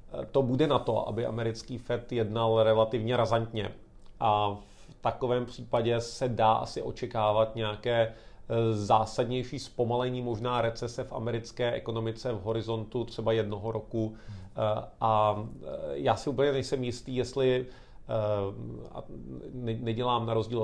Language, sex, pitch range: Czech, male, 110-120 Hz